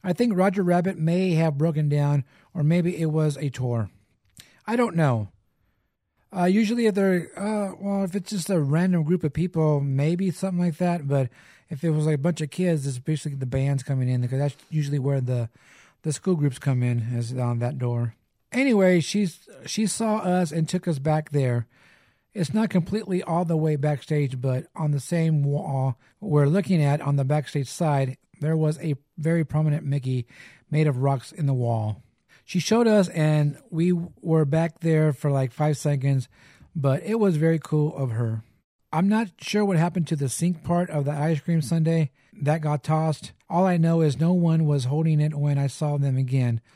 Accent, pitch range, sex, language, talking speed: American, 135-170 Hz, male, English, 200 wpm